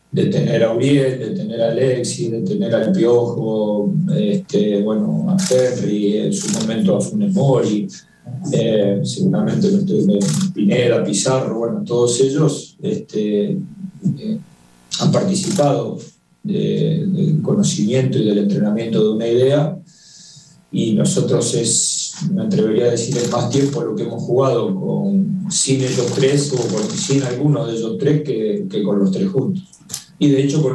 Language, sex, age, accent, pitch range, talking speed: Spanish, male, 40-59, Argentinian, 120-195 Hz, 150 wpm